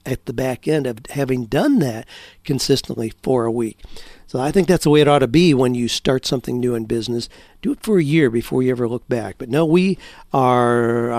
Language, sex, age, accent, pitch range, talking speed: English, male, 50-69, American, 120-145 Hz, 230 wpm